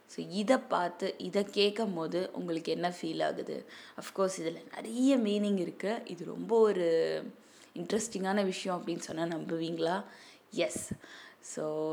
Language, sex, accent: Tamil, female, native